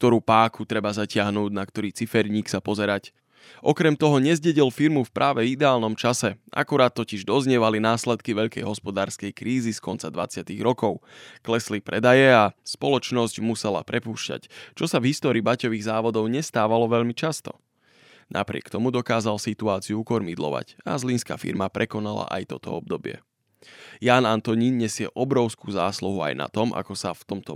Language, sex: Slovak, male